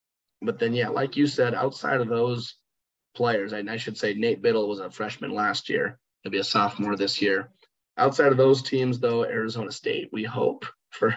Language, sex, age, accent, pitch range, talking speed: English, male, 20-39, American, 105-125 Hz, 200 wpm